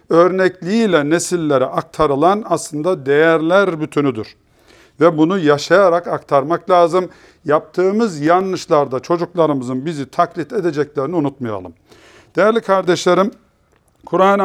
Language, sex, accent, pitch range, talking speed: Turkish, male, native, 140-185 Hz, 85 wpm